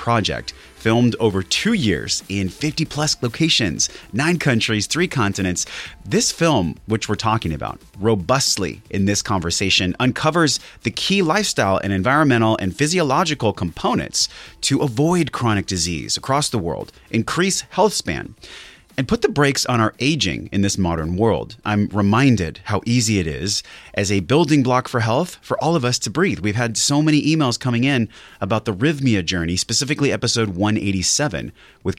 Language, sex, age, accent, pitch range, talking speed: English, male, 30-49, American, 95-140 Hz, 160 wpm